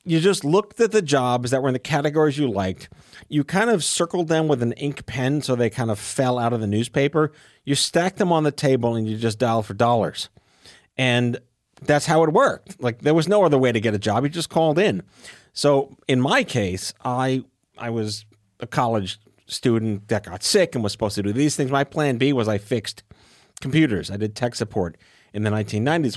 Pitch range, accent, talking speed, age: 110-150 Hz, American, 220 wpm, 40-59